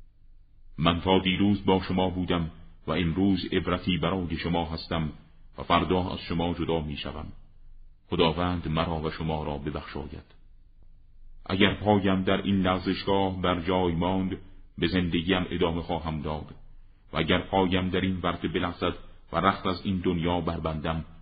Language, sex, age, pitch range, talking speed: Persian, male, 40-59, 80-95 Hz, 145 wpm